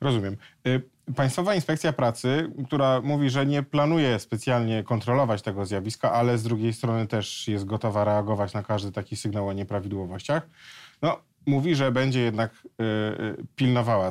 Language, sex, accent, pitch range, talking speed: Polish, male, native, 105-130 Hz, 135 wpm